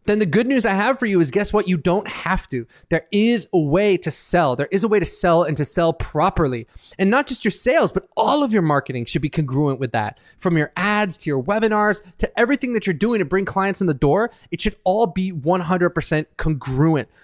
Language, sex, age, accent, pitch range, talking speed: English, male, 20-39, American, 150-195 Hz, 240 wpm